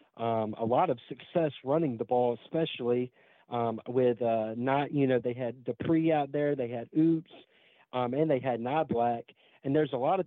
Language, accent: English, American